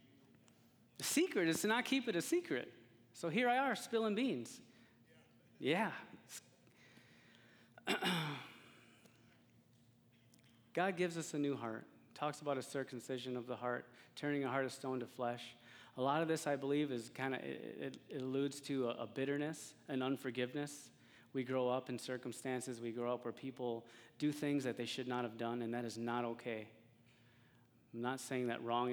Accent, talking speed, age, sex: American, 170 wpm, 30-49, male